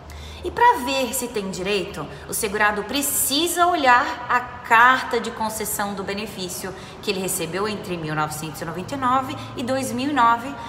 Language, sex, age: Portuguese, female, 20-39